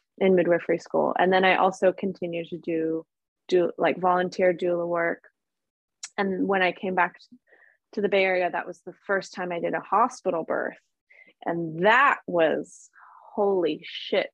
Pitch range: 175-200 Hz